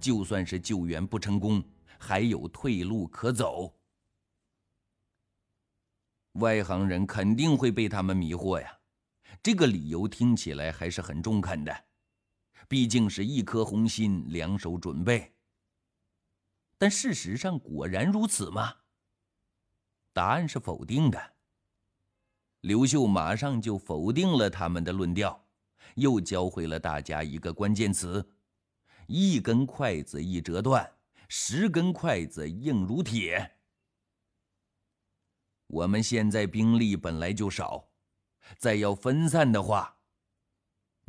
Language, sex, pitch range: Chinese, male, 95-110 Hz